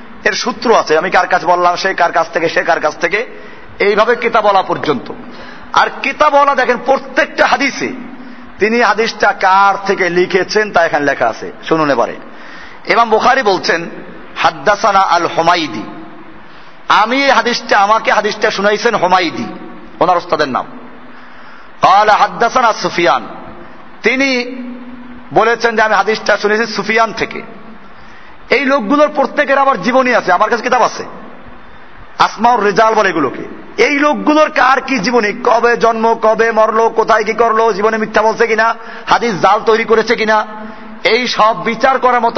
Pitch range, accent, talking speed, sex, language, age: 205-245 Hz, native, 135 wpm, male, Bengali, 50-69